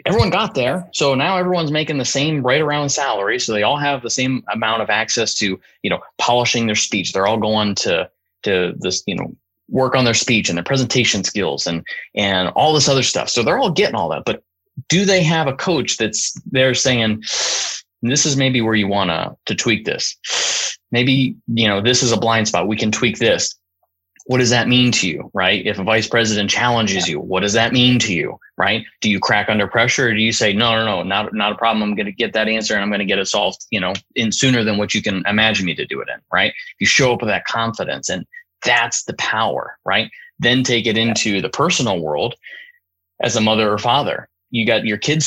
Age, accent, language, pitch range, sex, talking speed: 20-39, American, English, 105-130 Hz, male, 235 wpm